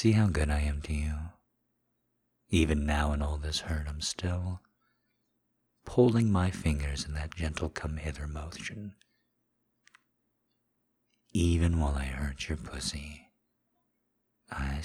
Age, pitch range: 50-69, 70-90 Hz